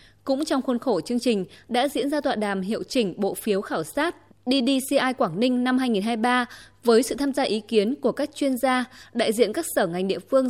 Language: Vietnamese